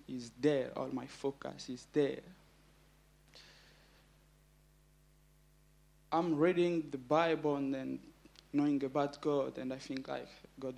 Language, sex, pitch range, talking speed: English, male, 140-160 Hz, 110 wpm